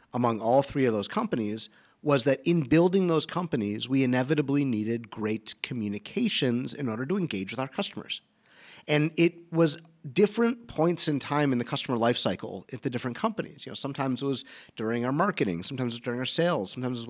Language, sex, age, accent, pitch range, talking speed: English, male, 30-49, American, 115-170 Hz, 200 wpm